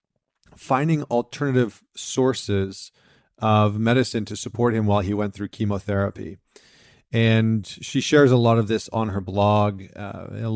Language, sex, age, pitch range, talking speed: English, male, 30-49, 105-120 Hz, 140 wpm